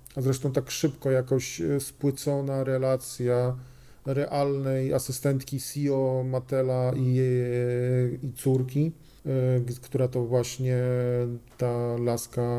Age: 40-59